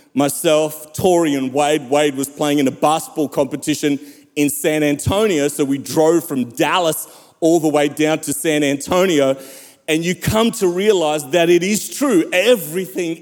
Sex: male